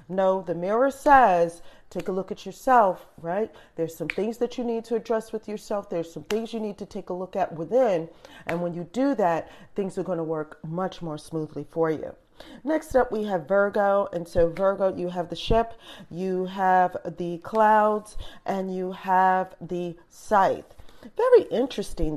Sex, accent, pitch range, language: female, American, 175-215 Hz, English